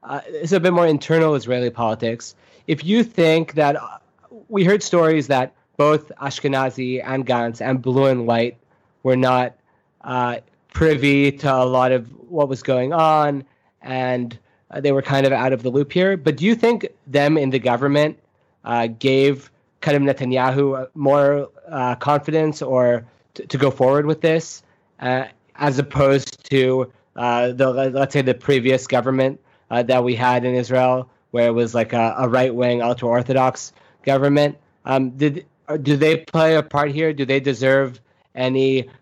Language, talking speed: English, 165 wpm